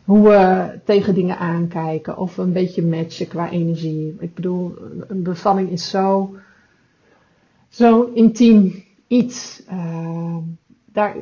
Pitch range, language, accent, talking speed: 170-200 Hz, Dutch, Dutch, 120 wpm